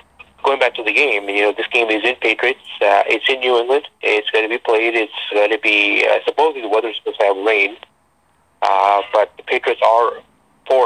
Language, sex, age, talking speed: English, male, 30-49, 225 wpm